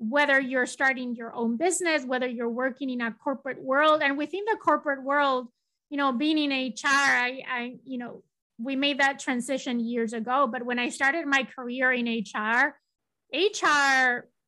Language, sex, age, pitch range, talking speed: English, female, 20-39, 245-280 Hz, 175 wpm